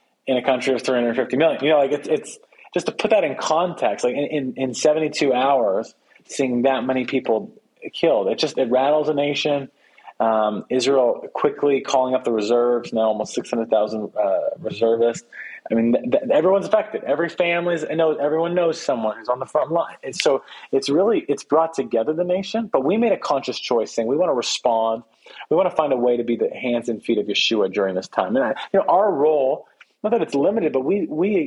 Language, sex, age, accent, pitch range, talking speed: English, male, 30-49, American, 115-165 Hz, 215 wpm